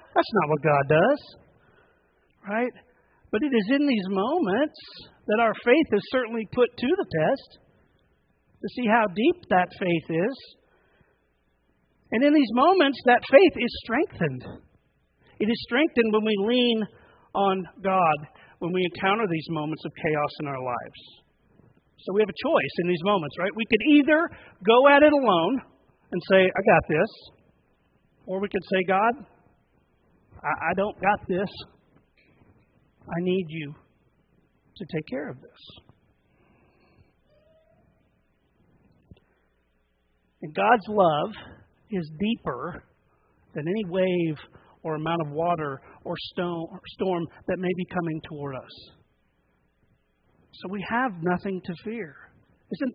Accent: American